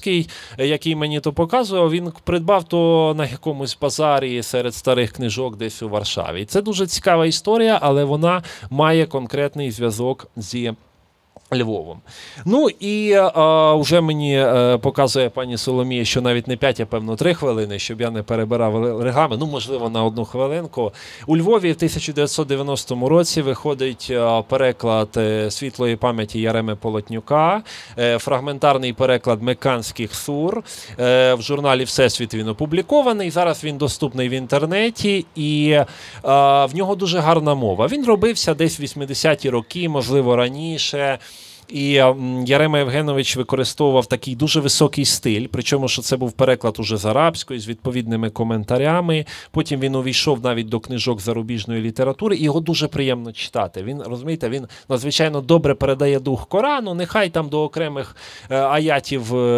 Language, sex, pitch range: Ukrainian, male, 120-155 Hz